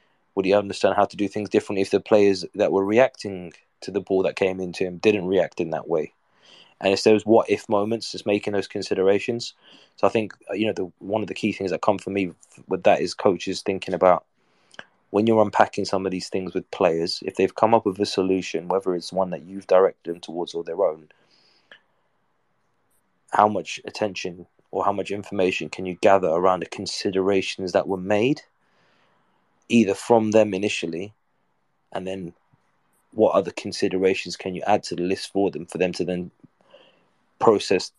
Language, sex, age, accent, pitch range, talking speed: English, male, 20-39, British, 90-105 Hz, 190 wpm